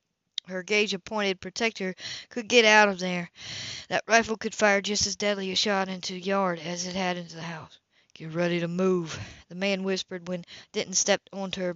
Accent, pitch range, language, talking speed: American, 185-210 Hz, English, 195 wpm